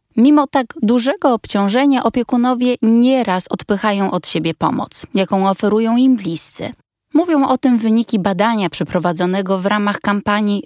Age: 20-39